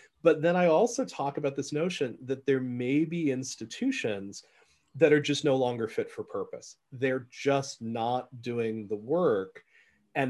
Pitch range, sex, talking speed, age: 120-150 Hz, male, 165 wpm, 30-49